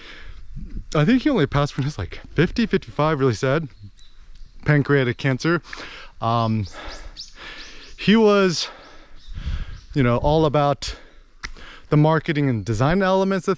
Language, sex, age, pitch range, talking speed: English, male, 20-39, 120-155 Hz, 125 wpm